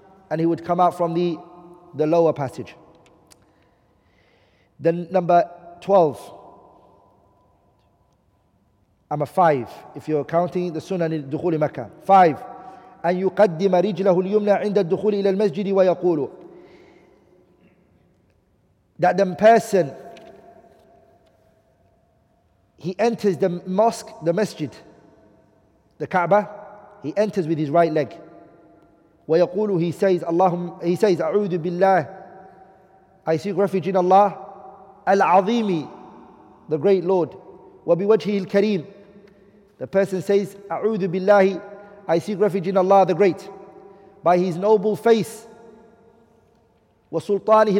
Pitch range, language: 170-205 Hz, English